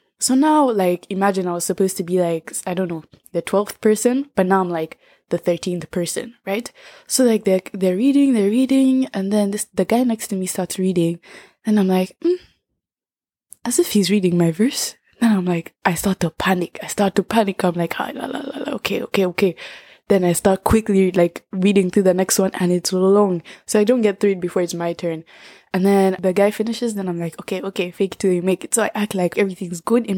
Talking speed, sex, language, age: 225 wpm, female, English, 20-39